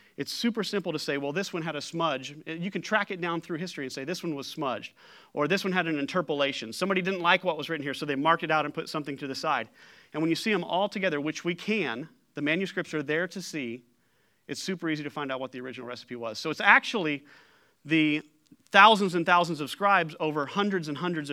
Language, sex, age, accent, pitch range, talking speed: English, male, 40-59, American, 140-185 Hz, 250 wpm